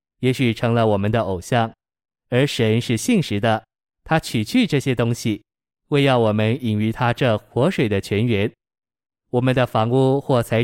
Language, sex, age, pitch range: Chinese, male, 20-39, 110-130 Hz